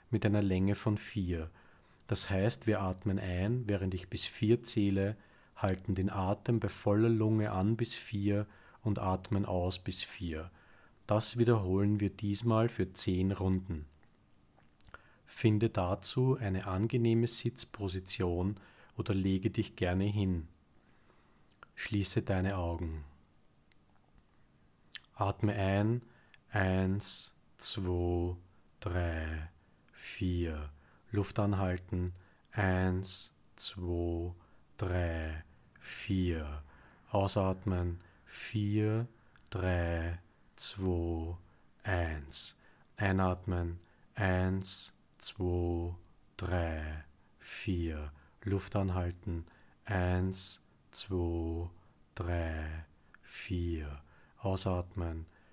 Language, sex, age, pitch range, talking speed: German, male, 40-59, 85-100 Hz, 85 wpm